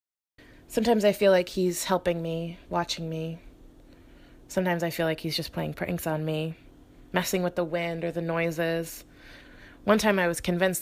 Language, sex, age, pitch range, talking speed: English, female, 20-39, 160-185 Hz, 170 wpm